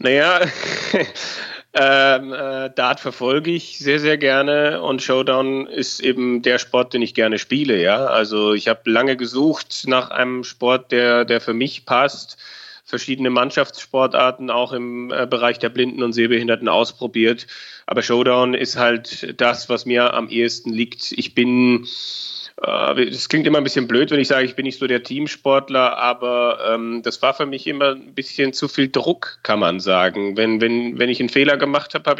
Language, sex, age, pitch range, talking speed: German, male, 30-49, 120-140 Hz, 175 wpm